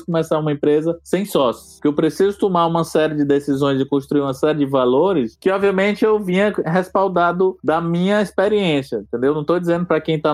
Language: Portuguese